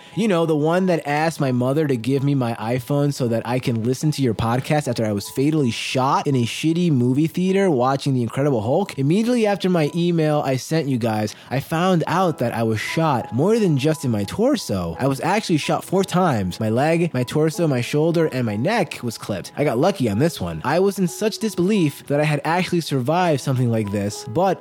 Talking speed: 225 wpm